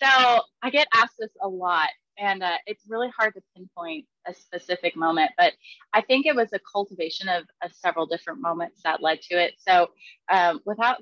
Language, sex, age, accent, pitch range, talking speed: English, female, 20-39, American, 180-225 Hz, 195 wpm